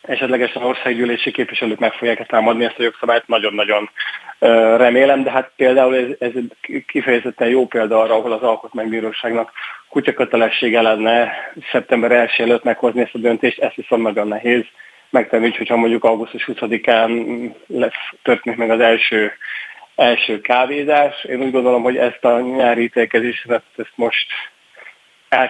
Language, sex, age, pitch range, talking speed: Hungarian, male, 20-39, 110-120 Hz, 140 wpm